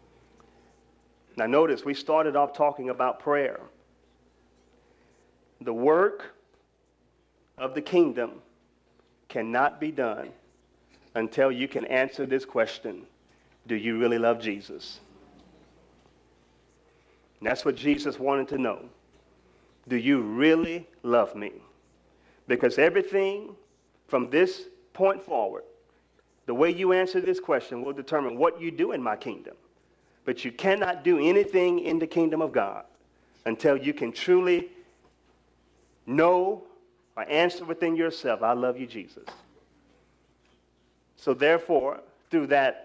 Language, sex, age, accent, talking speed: English, male, 40-59, American, 120 wpm